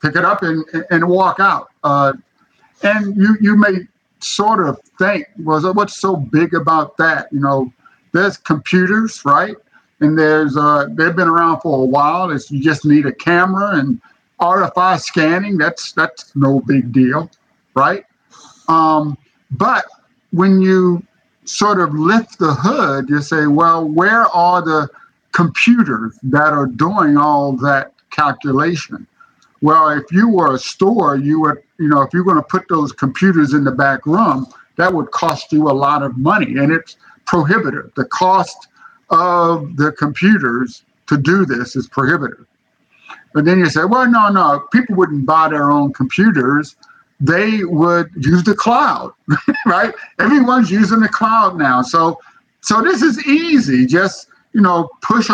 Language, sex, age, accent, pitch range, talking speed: English, male, 50-69, American, 145-195 Hz, 160 wpm